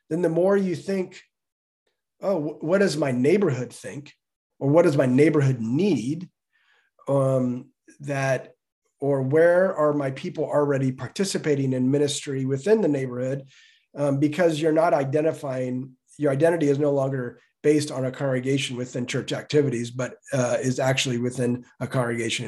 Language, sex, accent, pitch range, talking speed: English, male, American, 130-165 Hz, 145 wpm